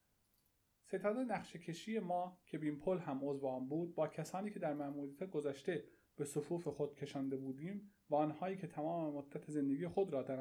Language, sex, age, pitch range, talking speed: Persian, male, 30-49, 140-180 Hz, 175 wpm